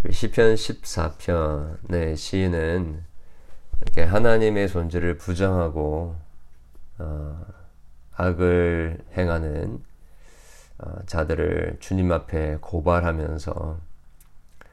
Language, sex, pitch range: Korean, male, 80-95 Hz